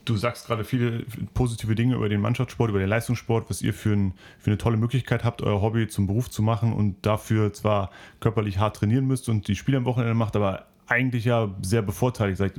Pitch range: 105-125 Hz